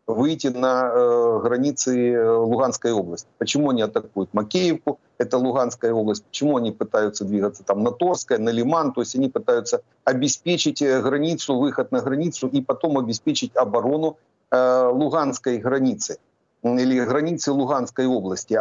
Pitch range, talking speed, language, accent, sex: 120-145 Hz, 140 wpm, Ukrainian, native, male